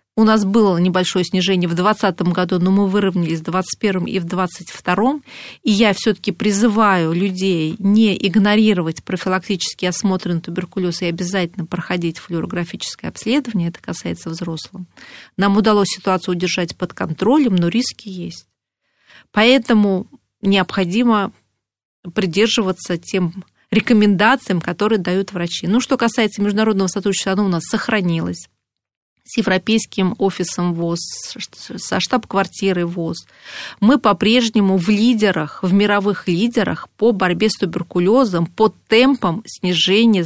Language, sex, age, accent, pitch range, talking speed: Russian, female, 30-49, native, 180-215 Hz, 120 wpm